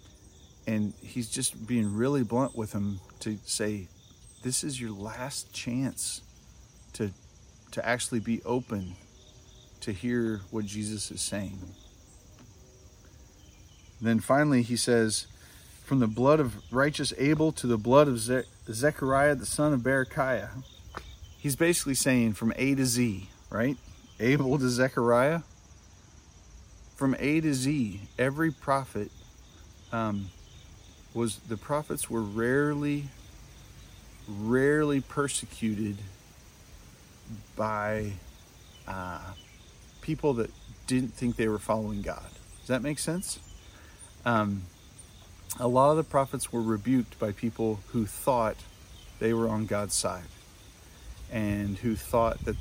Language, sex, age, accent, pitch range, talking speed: English, male, 40-59, American, 95-125 Hz, 120 wpm